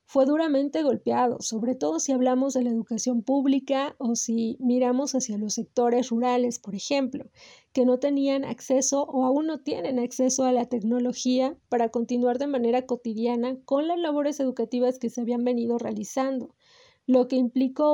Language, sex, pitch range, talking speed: Spanish, female, 240-280 Hz, 165 wpm